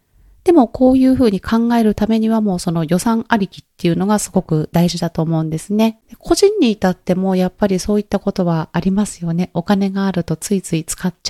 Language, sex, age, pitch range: Japanese, female, 30-49, 175-225 Hz